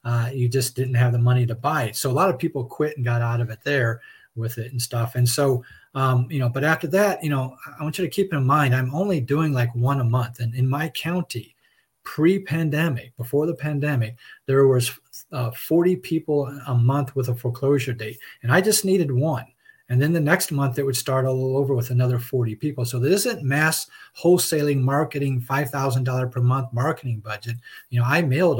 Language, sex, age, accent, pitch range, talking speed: English, male, 40-59, American, 120-150 Hz, 215 wpm